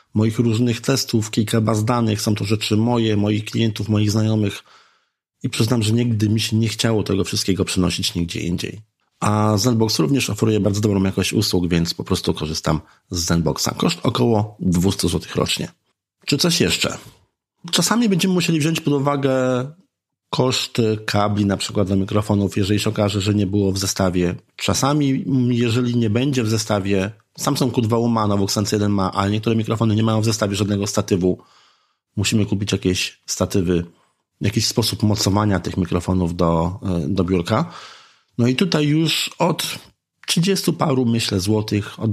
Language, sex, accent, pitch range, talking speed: Polish, male, native, 95-115 Hz, 155 wpm